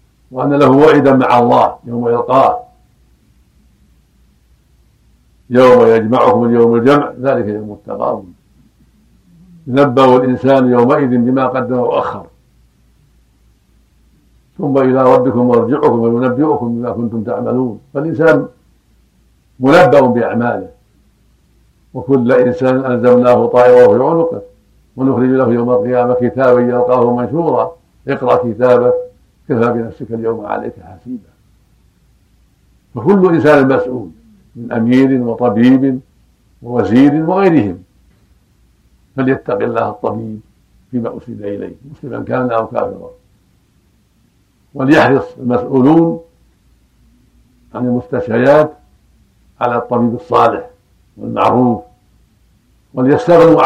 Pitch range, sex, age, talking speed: 115-130 Hz, male, 60-79, 85 wpm